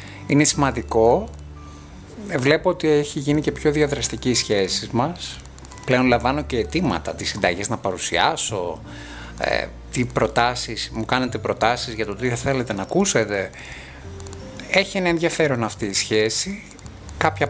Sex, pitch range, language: male, 105-150 Hz, Greek